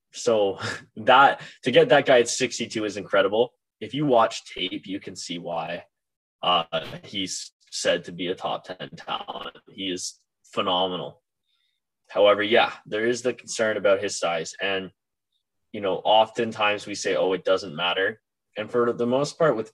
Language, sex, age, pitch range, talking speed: English, male, 10-29, 100-125 Hz, 165 wpm